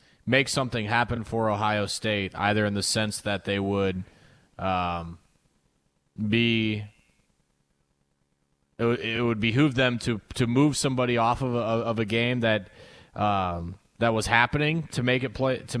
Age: 20-39